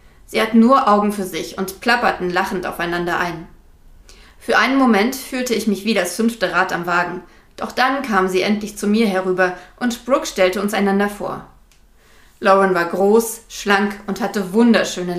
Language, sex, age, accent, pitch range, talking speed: German, female, 20-39, German, 185-230 Hz, 175 wpm